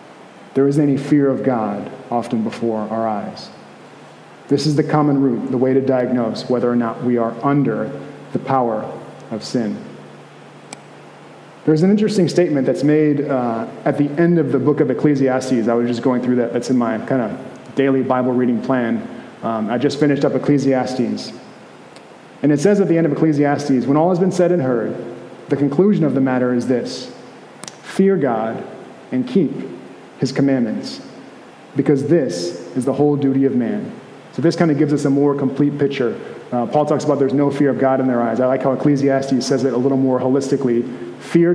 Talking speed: 195 wpm